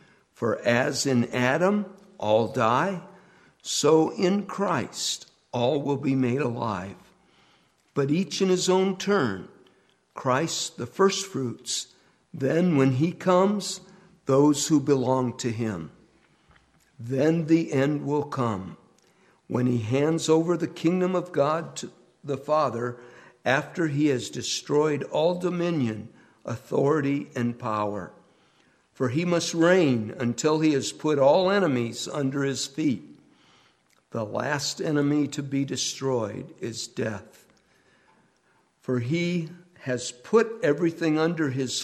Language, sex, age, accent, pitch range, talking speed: English, male, 60-79, American, 120-165 Hz, 120 wpm